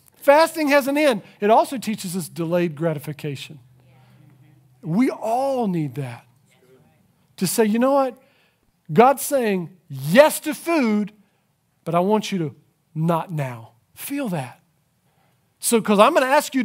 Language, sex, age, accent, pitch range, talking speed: English, male, 40-59, American, 155-235 Hz, 145 wpm